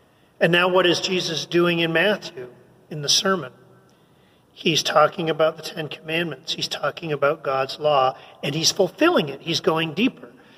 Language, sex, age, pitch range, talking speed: English, male, 40-59, 145-195 Hz, 165 wpm